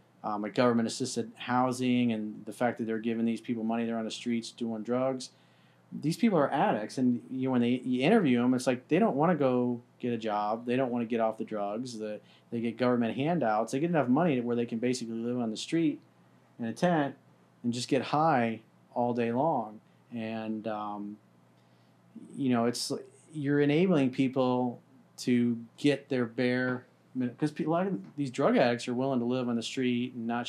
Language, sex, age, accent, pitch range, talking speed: English, male, 40-59, American, 110-130 Hz, 205 wpm